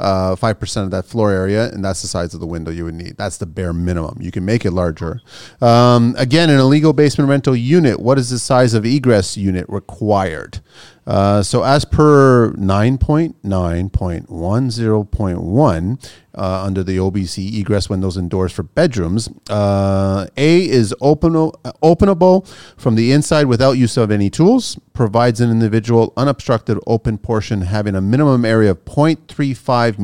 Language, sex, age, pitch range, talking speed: English, male, 30-49, 95-125 Hz, 165 wpm